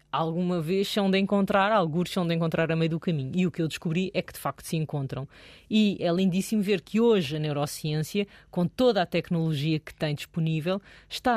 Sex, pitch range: female, 175-230 Hz